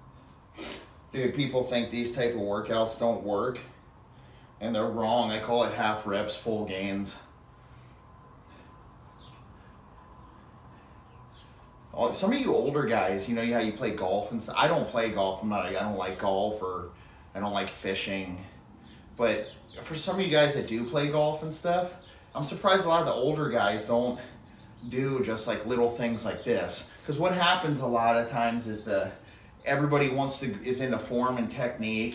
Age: 30-49